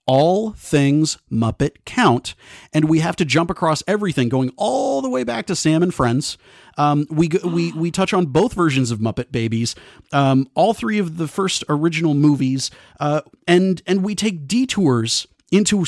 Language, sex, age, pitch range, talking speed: English, male, 30-49, 130-175 Hz, 175 wpm